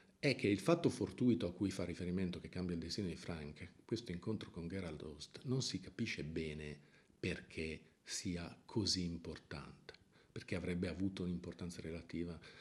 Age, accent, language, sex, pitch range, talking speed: 50-69, native, Italian, male, 90-115 Hz, 155 wpm